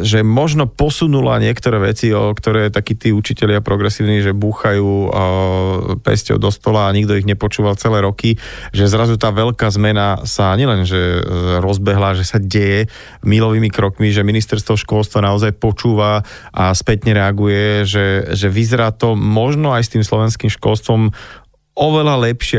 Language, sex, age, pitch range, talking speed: Slovak, male, 30-49, 100-115 Hz, 150 wpm